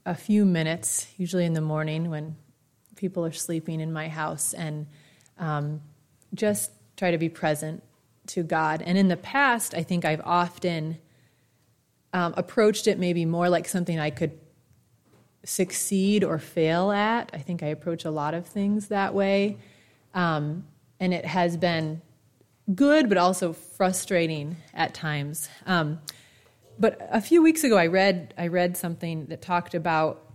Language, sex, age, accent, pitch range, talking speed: English, female, 30-49, American, 155-185 Hz, 155 wpm